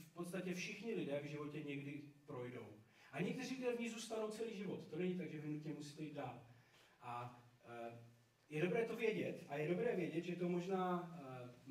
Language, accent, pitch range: Czech, native, 140-175 Hz